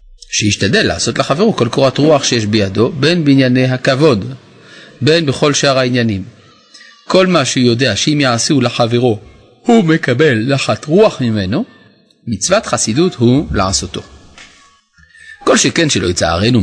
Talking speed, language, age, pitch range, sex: 125 wpm, Hebrew, 30-49, 110-155 Hz, male